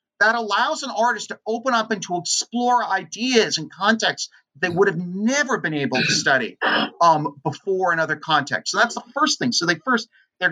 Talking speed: 200 wpm